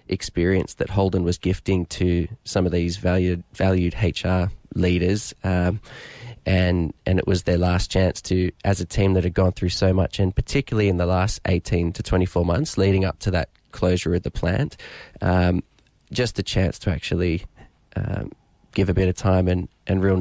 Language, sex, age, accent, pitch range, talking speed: English, male, 20-39, Australian, 90-95 Hz, 190 wpm